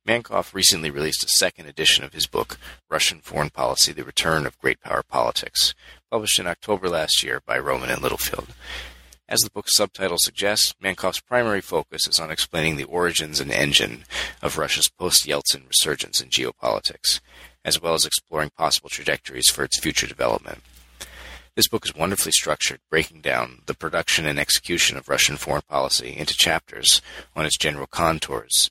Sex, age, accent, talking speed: male, 30-49, American, 165 wpm